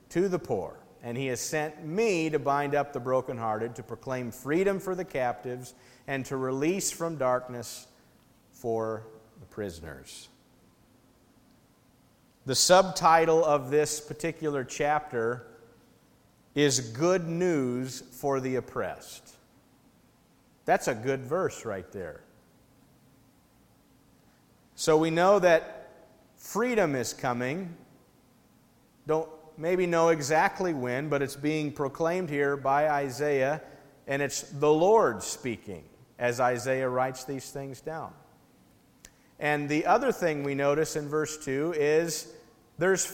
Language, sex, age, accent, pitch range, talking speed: English, male, 50-69, American, 125-165 Hz, 120 wpm